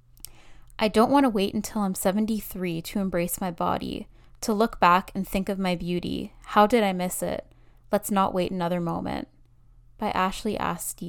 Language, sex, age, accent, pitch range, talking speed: English, female, 10-29, American, 170-205 Hz, 180 wpm